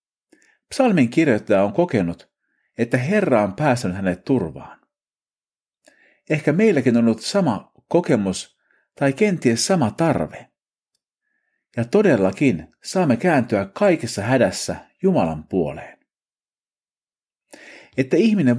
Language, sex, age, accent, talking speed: Finnish, male, 50-69, native, 95 wpm